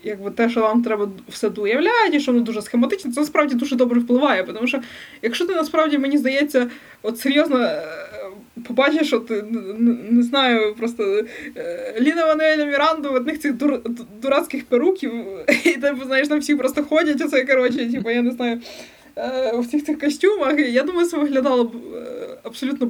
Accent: native